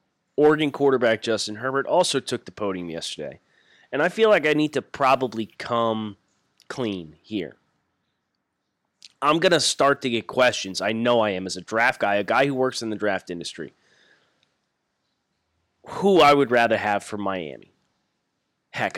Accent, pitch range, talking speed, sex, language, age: American, 105-135 Hz, 160 wpm, male, English, 30-49